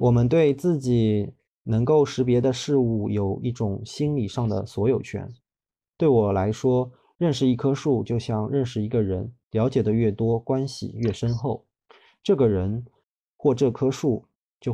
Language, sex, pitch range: Chinese, male, 110-135 Hz